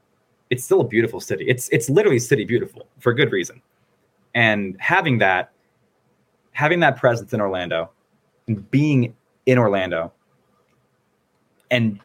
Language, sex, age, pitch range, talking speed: English, male, 20-39, 100-125 Hz, 130 wpm